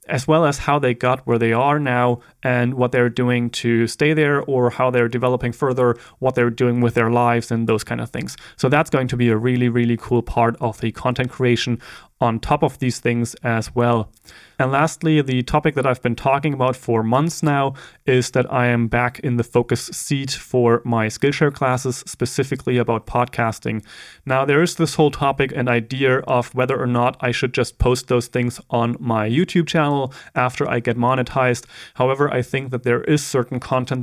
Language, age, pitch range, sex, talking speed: English, 30-49, 115-130 Hz, male, 205 wpm